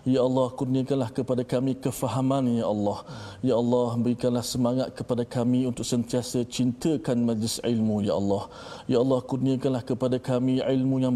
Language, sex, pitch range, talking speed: Malay, male, 120-130 Hz, 150 wpm